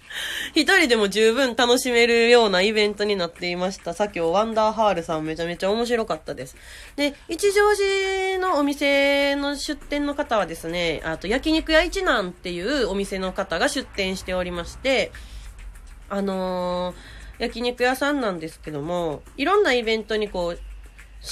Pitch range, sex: 175-260 Hz, female